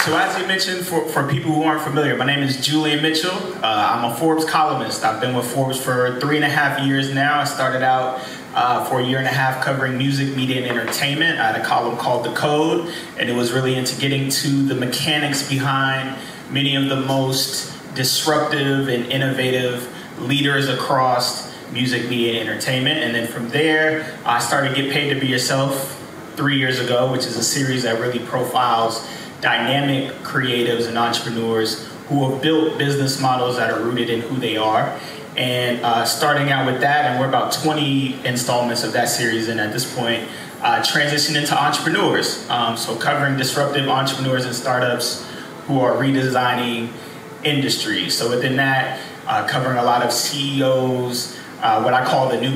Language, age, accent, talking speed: English, 20-39, American, 185 wpm